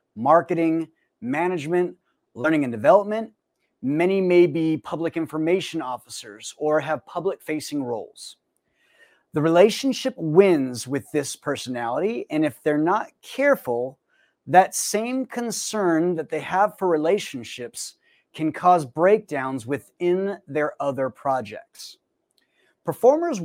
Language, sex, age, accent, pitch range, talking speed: English, male, 30-49, American, 150-195 Hz, 110 wpm